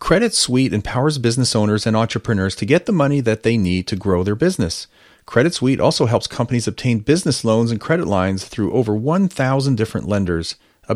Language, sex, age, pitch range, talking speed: English, male, 40-59, 105-140 Hz, 190 wpm